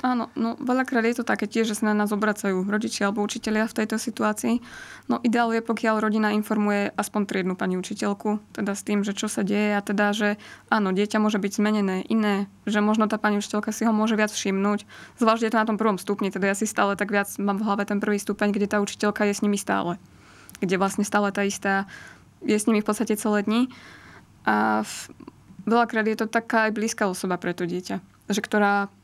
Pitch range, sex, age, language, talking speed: 195-215 Hz, female, 20-39, Slovak, 220 wpm